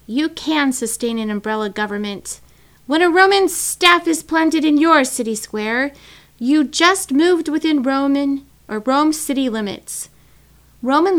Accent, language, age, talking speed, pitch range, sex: American, English, 30-49, 140 wpm, 215-265 Hz, female